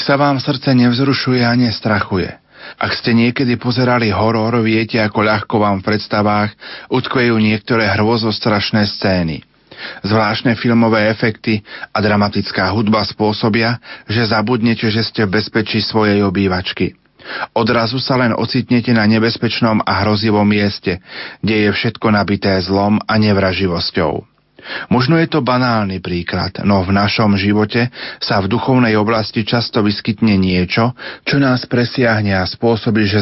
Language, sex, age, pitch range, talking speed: Slovak, male, 40-59, 105-120 Hz, 135 wpm